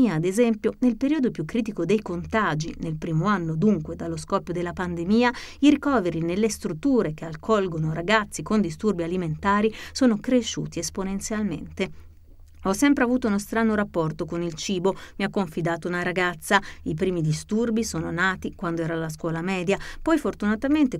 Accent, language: native, Italian